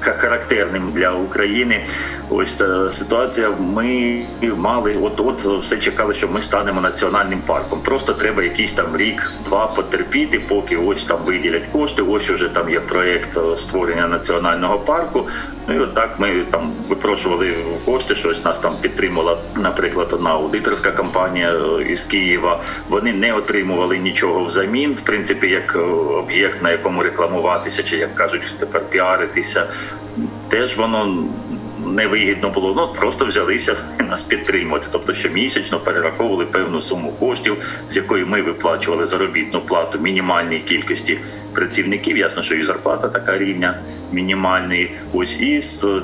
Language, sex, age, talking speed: Ukrainian, male, 40-59, 135 wpm